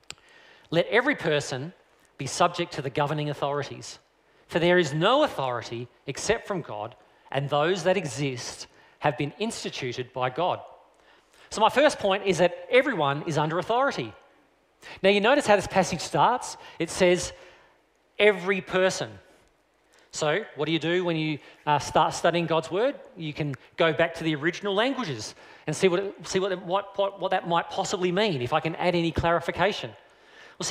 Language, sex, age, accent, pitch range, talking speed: English, male, 40-59, Australian, 145-195 Hz, 170 wpm